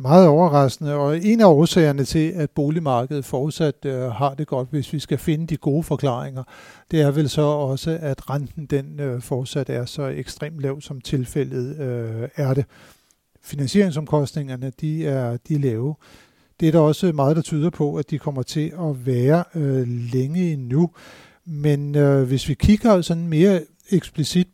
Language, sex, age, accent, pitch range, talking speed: Danish, male, 60-79, native, 135-160 Hz, 175 wpm